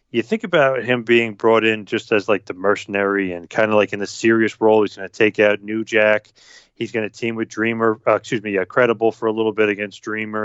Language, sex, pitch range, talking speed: English, male, 105-120 Hz, 255 wpm